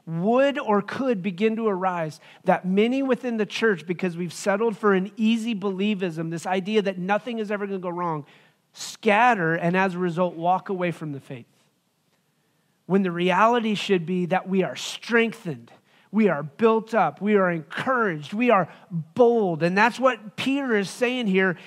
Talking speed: 175 wpm